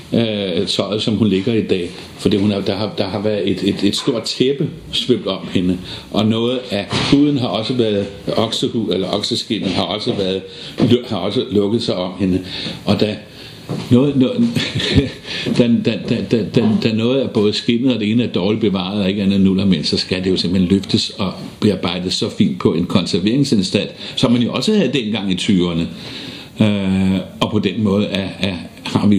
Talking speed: 175 wpm